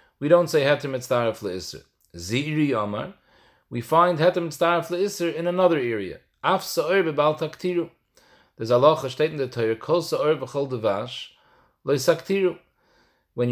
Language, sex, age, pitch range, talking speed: English, male, 40-59, 125-165 Hz, 140 wpm